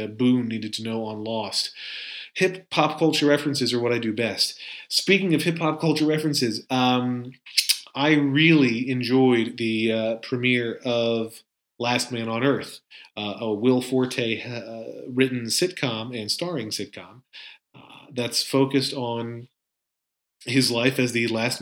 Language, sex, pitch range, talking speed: English, male, 115-140 Hz, 140 wpm